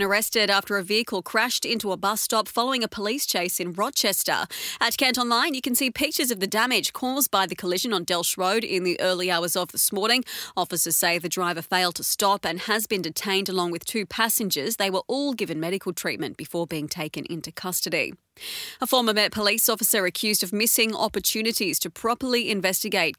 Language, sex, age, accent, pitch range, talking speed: English, female, 30-49, Australian, 180-230 Hz, 200 wpm